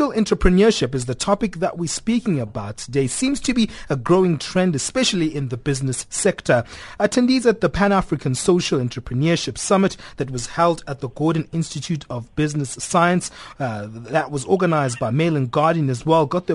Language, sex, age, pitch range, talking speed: English, male, 30-49, 135-185 Hz, 180 wpm